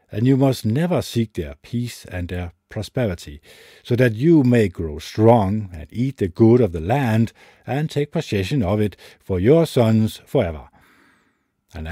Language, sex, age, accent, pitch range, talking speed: English, male, 50-69, Danish, 95-125 Hz, 165 wpm